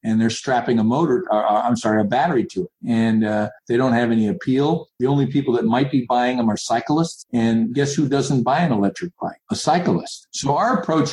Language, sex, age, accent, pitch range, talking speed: English, male, 50-69, American, 115-145 Hz, 225 wpm